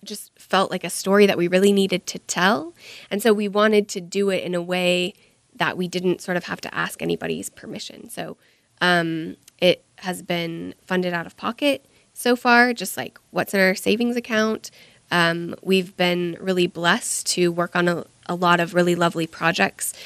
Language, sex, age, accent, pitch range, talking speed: English, female, 20-39, American, 170-195 Hz, 190 wpm